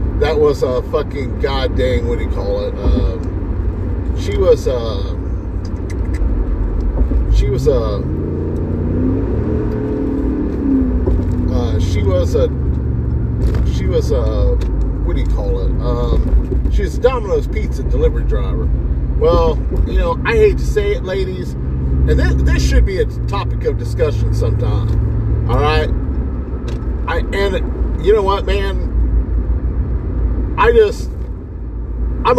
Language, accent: English, American